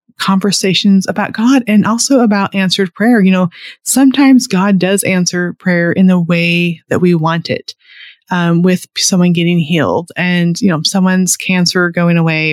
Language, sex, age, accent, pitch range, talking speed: English, female, 30-49, American, 175-205 Hz, 165 wpm